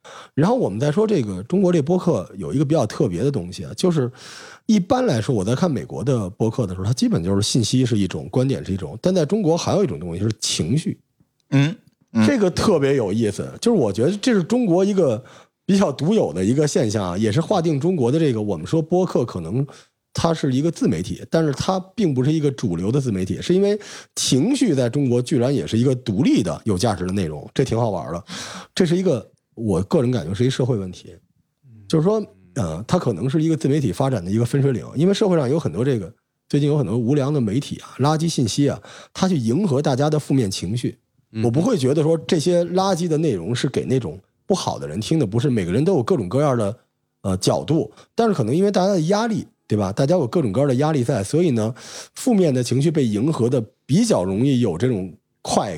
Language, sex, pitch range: Chinese, male, 115-175 Hz